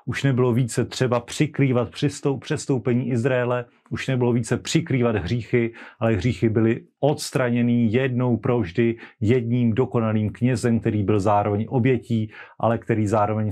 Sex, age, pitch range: male, 40-59, 115-130 Hz